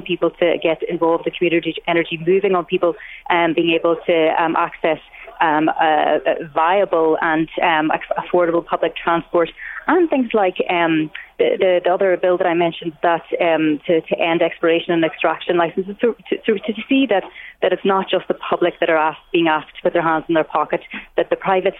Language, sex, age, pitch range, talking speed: English, female, 30-49, 160-180 Hz, 195 wpm